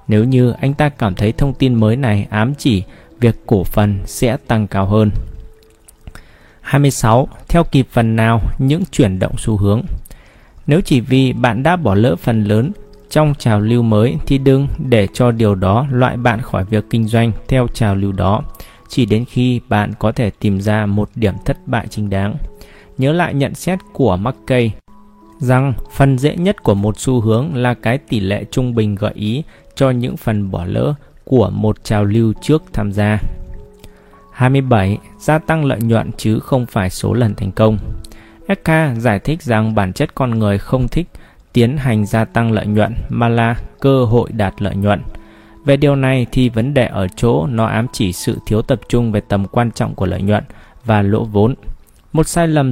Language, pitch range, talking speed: Vietnamese, 105-135 Hz, 190 wpm